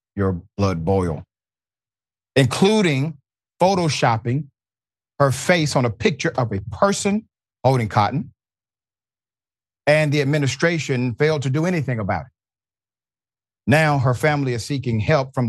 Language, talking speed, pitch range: English, 120 wpm, 110-145 Hz